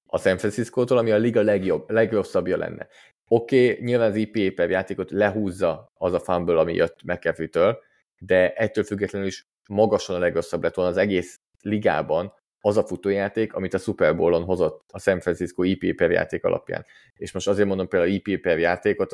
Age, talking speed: 20-39, 180 wpm